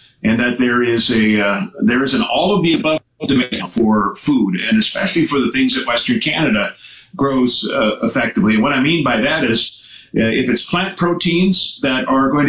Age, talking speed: 50-69, 200 wpm